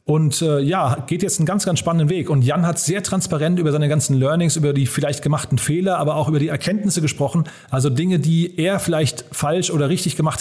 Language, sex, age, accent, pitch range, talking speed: German, male, 30-49, German, 140-175 Hz, 225 wpm